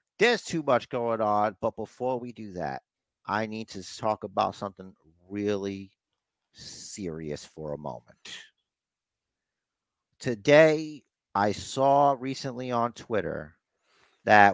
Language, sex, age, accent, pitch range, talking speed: English, male, 50-69, American, 100-130 Hz, 115 wpm